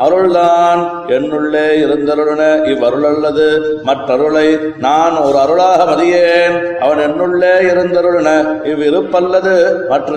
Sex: male